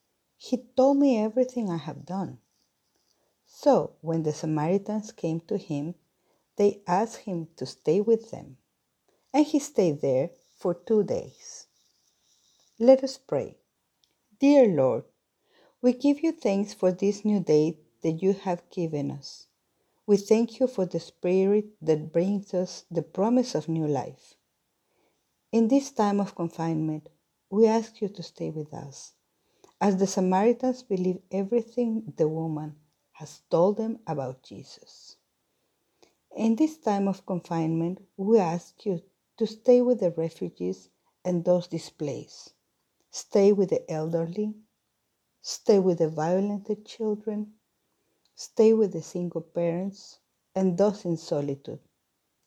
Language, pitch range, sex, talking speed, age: English, 165-225 Hz, female, 135 wpm, 50-69